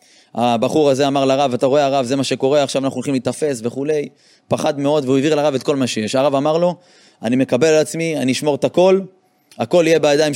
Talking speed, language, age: 220 wpm, Hebrew, 30-49